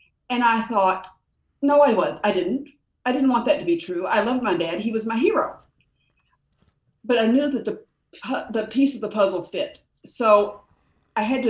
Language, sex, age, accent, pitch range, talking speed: English, female, 50-69, American, 185-245 Hz, 205 wpm